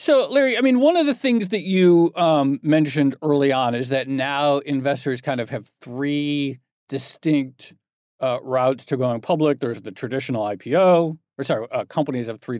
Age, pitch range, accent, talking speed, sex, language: 40-59, 125-160 Hz, American, 180 wpm, male, English